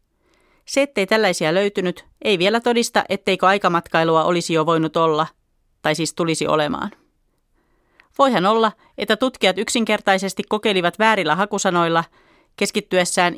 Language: Finnish